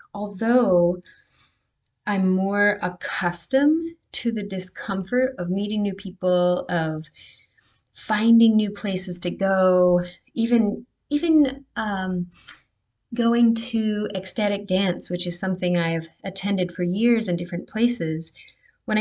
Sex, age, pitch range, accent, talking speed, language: female, 30-49, 180-245 Hz, American, 110 wpm, English